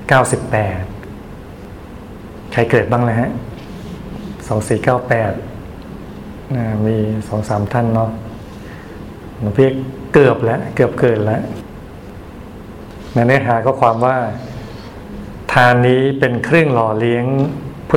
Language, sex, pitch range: Thai, male, 105-125 Hz